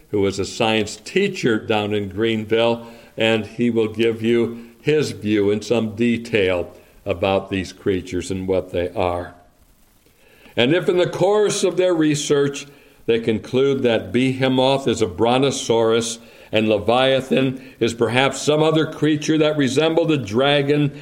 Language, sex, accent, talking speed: English, male, American, 145 wpm